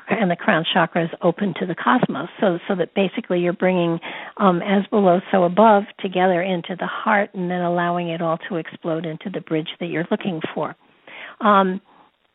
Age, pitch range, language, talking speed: 60-79, 180-215 Hz, English, 190 wpm